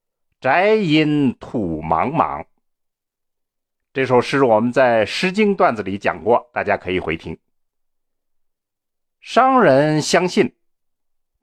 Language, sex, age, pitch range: Chinese, male, 60-79, 135-200 Hz